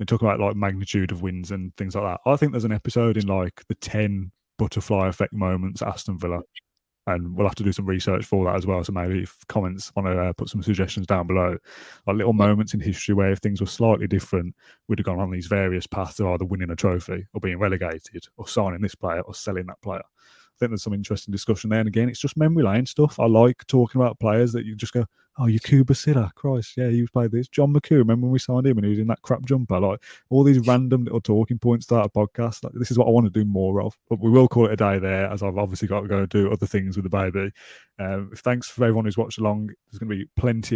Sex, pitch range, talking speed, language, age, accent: male, 95-115 Hz, 265 wpm, English, 30-49, British